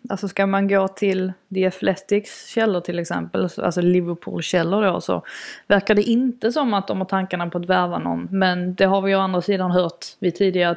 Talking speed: 210 wpm